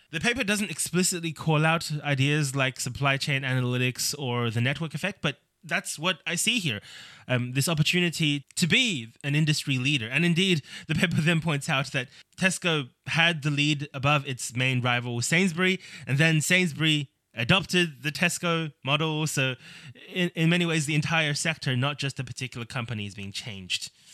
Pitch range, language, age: 130-170 Hz, English, 20-39